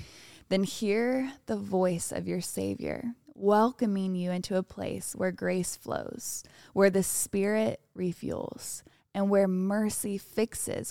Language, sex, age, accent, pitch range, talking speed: English, female, 20-39, American, 180-215 Hz, 125 wpm